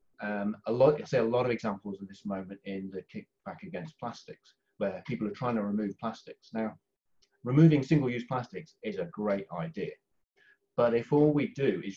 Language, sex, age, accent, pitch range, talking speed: English, male, 30-49, British, 110-160 Hz, 190 wpm